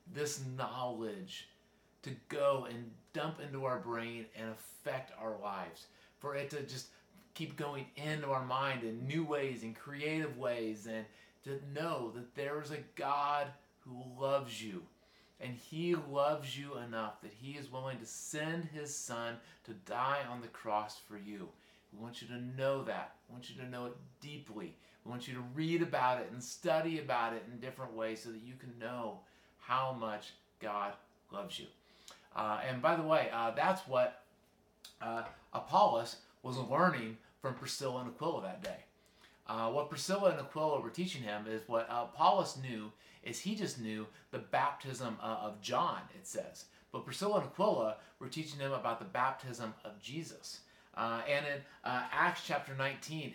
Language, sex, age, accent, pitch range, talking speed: English, male, 30-49, American, 115-145 Hz, 175 wpm